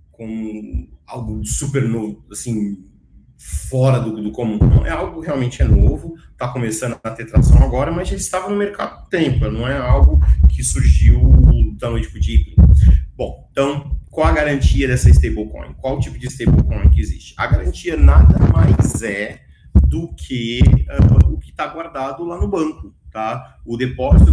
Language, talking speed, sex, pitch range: Portuguese, 165 wpm, male, 80-125 Hz